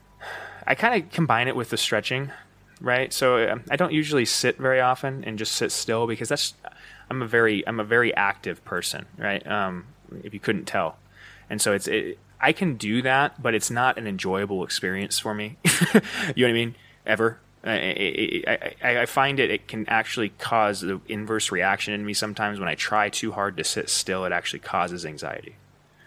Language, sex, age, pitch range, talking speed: English, male, 20-39, 100-130 Hz, 200 wpm